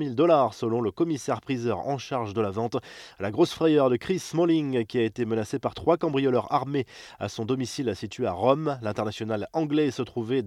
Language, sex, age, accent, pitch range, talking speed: French, male, 20-39, French, 115-150 Hz, 195 wpm